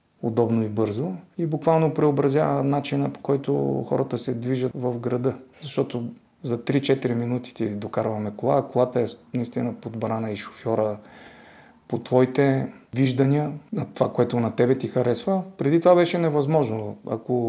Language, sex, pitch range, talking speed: Bulgarian, male, 115-140 Hz, 150 wpm